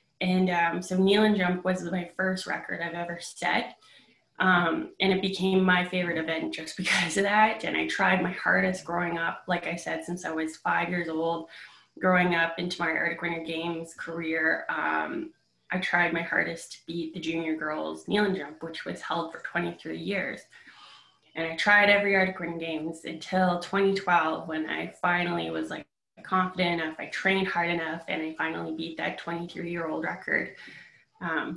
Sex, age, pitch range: female, 20-39, 165-185 Hz